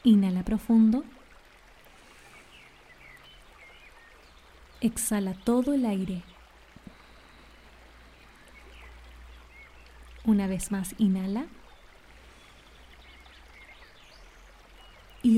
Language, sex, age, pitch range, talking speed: Spanish, female, 20-39, 190-235 Hz, 45 wpm